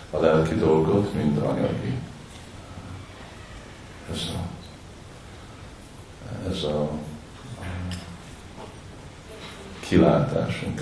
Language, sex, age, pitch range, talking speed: Hungarian, male, 50-69, 80-95 Hz, 95 wpm